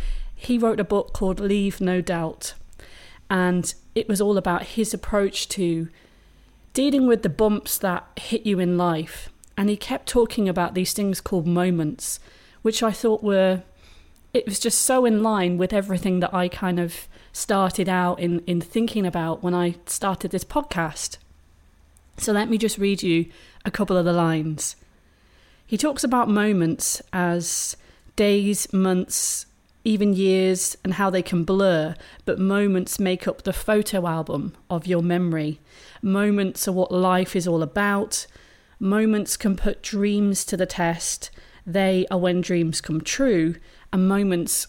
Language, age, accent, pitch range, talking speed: English, 30-49, British, 175-205 Hz, 160 wpm